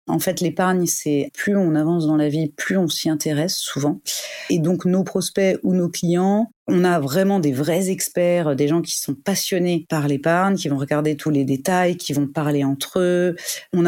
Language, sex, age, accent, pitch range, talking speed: French, female, 30-49, French, 145-180 Hz, 205 wpm